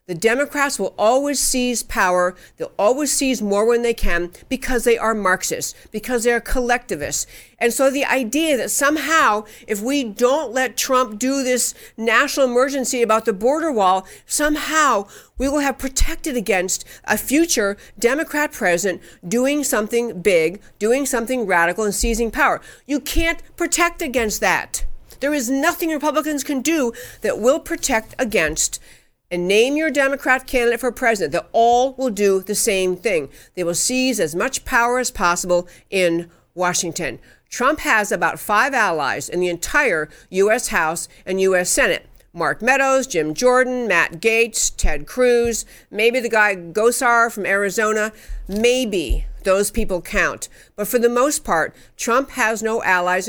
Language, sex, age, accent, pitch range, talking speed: English, female, 50-69, American, 195-265 Hz, 155 wpm